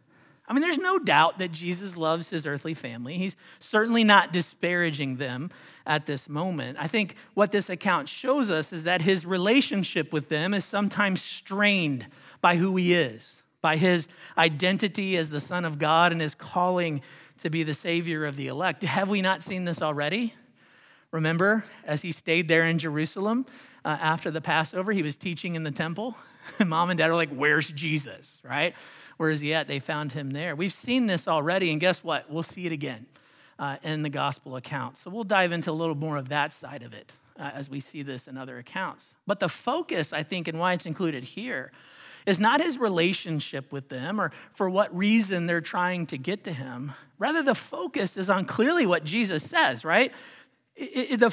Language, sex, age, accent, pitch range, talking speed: English, male, 40-59, American, 155-205 Hz, 195 wpm